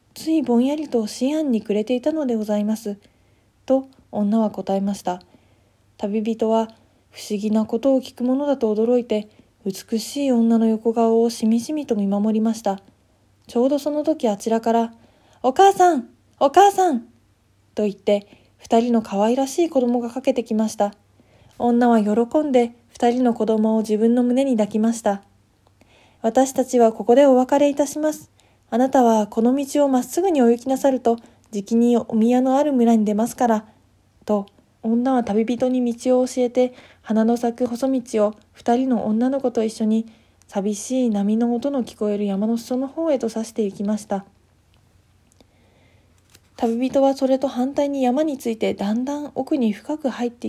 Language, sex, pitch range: Japanese, female, 210-255 Hz